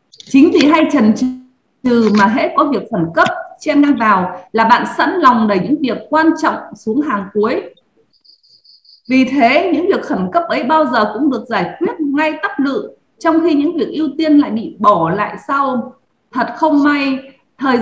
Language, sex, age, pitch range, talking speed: Vietnamese, female, 20-39, 235-315 Hz, 190 wpm